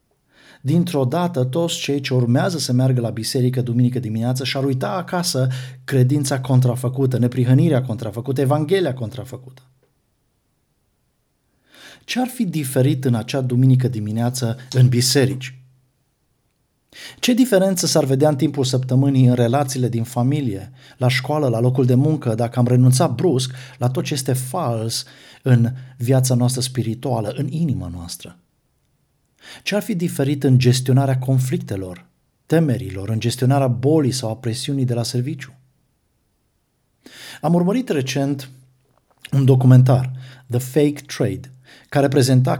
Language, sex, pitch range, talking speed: Romanian, male, 125-140 Hz, 130 wpm